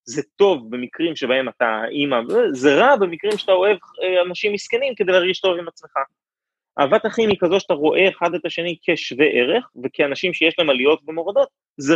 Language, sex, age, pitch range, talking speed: Hebrew, male, 30-49, 145-220 Hz, 180 wpm